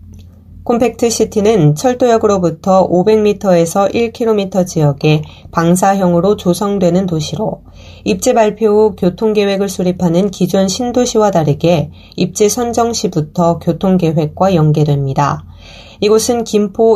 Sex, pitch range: female, 165-215 Hz